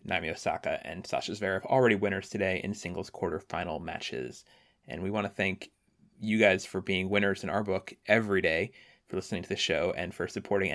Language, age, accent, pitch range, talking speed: English, 20-39, American, 95-110 Hz, 195 wpm